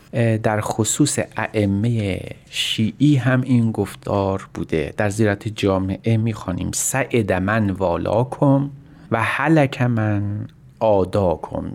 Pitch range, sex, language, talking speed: 100-125 Hz, male, Persian, 105 wpm